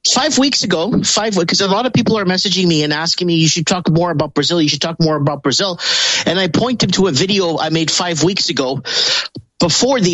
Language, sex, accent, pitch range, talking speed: English, male, American, 160-205 Hz, 235 wpm